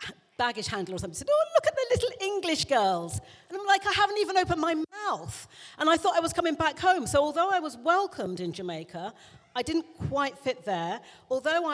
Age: 40-59